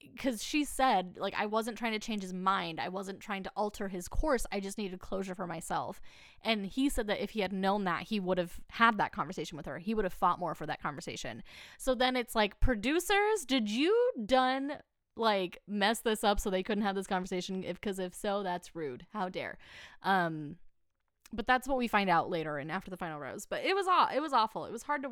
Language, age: English, 10-29